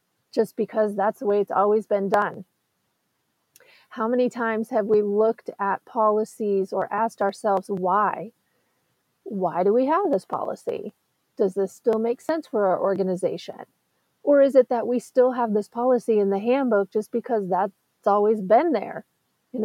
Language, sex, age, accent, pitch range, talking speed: English, female, 30-49, American, 195-250 Hz, 165 wpm